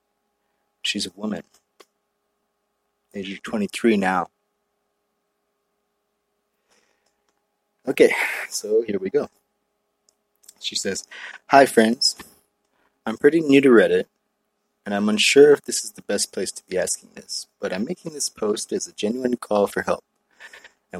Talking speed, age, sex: 130 wpm, 30-49, male